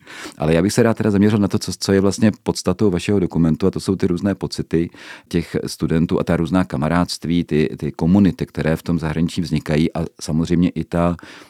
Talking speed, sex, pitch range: 205 wpm, male, 75-90 Hz